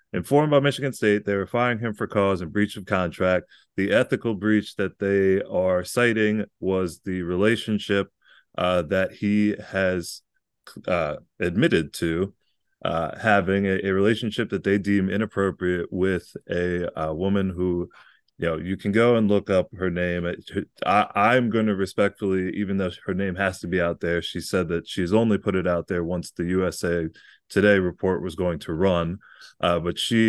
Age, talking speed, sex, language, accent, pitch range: 20-39, 175 wpm, male, English, American, 85-105 Hz